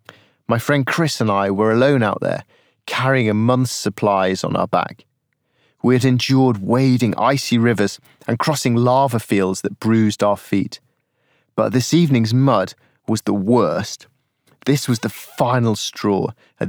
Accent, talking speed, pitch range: British, 155 wpm, 105-130 Hz